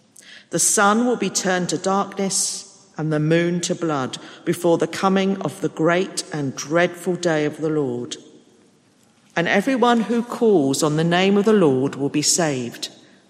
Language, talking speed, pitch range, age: English, 165 wpm, 150-205 Hz, 50-69